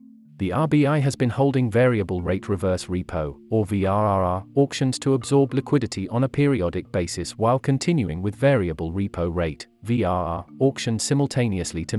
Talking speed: 145 wpm